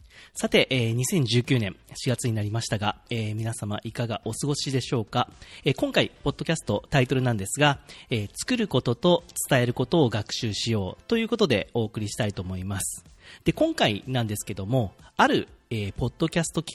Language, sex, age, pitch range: Japanese, male, 40-59, 105-165 Hz